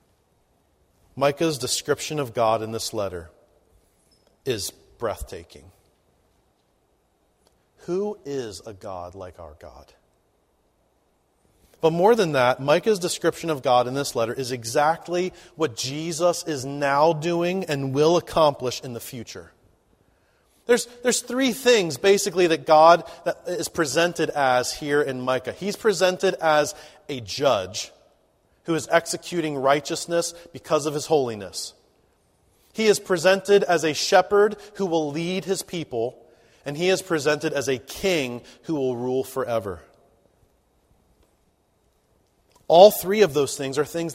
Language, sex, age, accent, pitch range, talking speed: English, male, 30-49, American, 130-175 Hz, 130 wpm